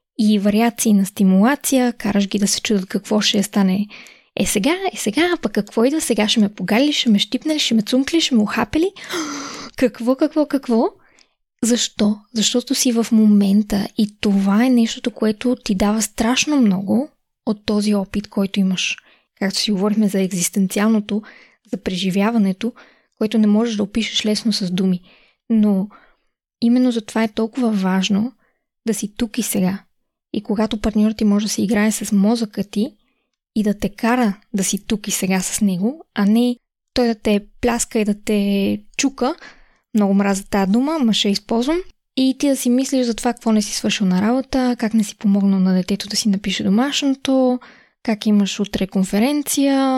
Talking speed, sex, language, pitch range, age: 180 wpm, female, Bulgarian, 205-245 Hz, 20-39